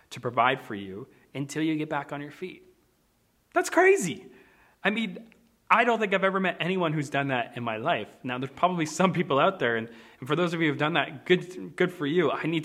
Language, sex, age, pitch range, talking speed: English, male, 20-39, 130-175 Hz, 230 wpm